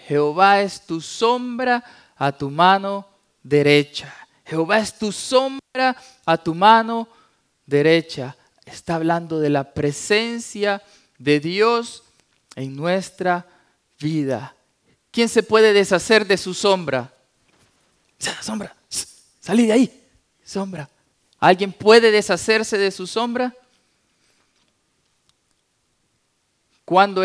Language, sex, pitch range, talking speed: English, male, 150-220 Hz, 100 wpm